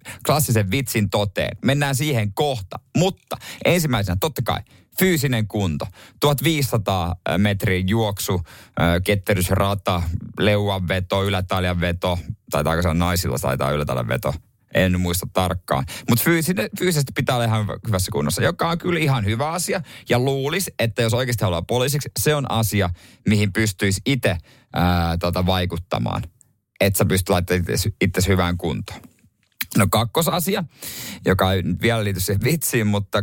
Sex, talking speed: male, 135 wpm